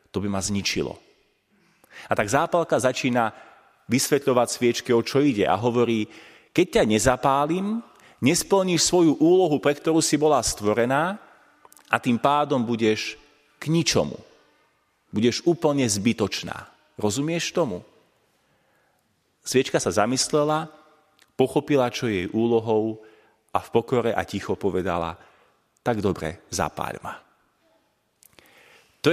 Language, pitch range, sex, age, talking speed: Slovak, 115-155 Hz, male, 30-49, 115 wpm